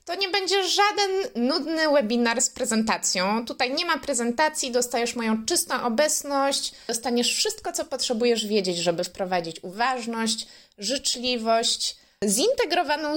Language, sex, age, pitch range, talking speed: Polish, female, 20-39, 205-275 Hz, 120 wpm